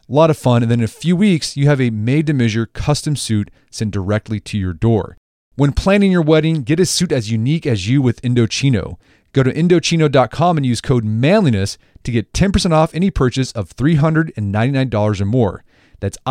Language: English